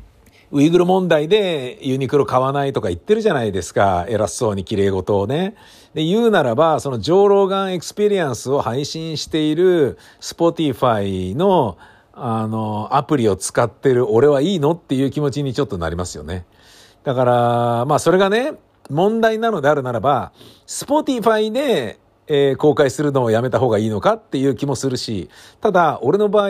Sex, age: male, 50-69